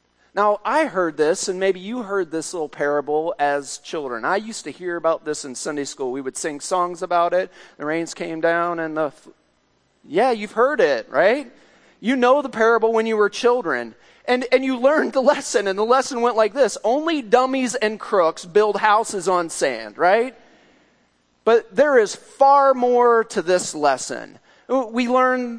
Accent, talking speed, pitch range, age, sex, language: American, 185 wpm, 165-235 Hz, 30-49, male, English